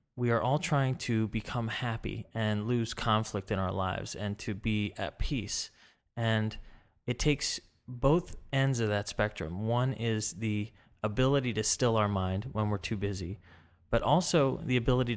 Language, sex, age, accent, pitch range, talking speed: English, male, 30-49, American, 105-125 Hz, 165 wpm